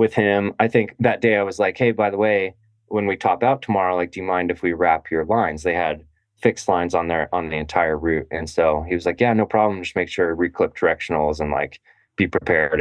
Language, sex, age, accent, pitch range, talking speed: English, male, 20-39, American, 80-100 Hz, 255 wpm